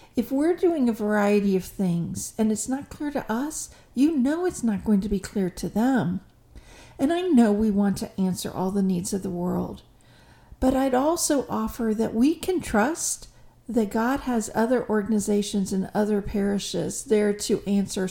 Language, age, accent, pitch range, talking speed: English, 50-69, American, 190-245 Hz, 180 wpm